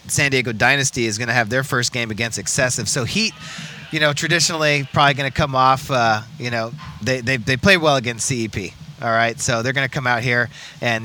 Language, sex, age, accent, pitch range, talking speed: English, male, 30-49, American, 115-135 Hz, 230 wpm